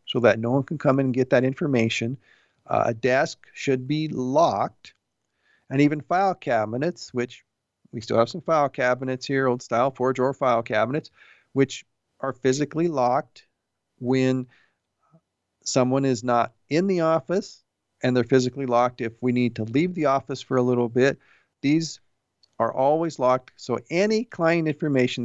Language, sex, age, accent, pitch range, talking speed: English, male, 50-69, American, 125-145 Hz, 165 wpm